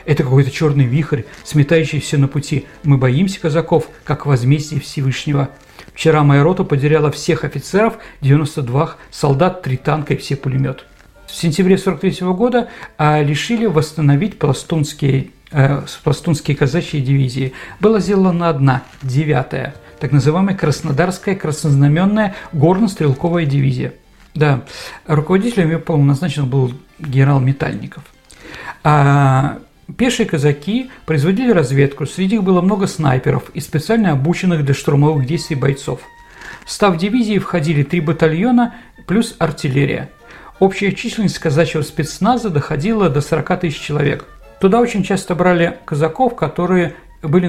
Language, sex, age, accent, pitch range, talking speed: Russian, male, 50-69, native, 145-185 Hz, 120 wpm